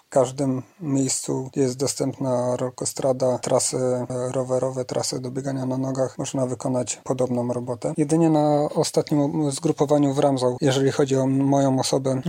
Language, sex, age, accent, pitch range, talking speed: Polish, male, 40-59, native, 125-140 Hz, 135 wpm